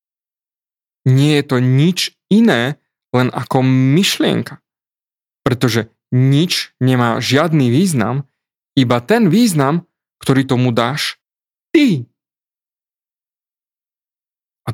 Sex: male